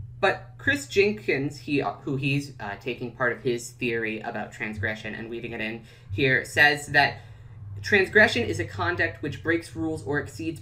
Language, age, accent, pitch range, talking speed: English, 20-39, American, 110-150 Hz, 165 wpm